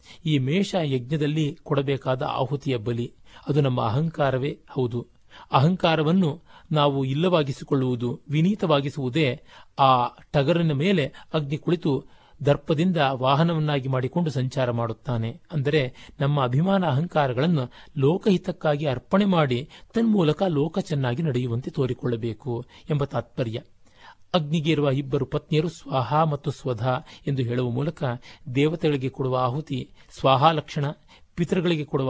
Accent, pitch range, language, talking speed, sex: native, 130-160 Hz, Kannada, 100 wpm, male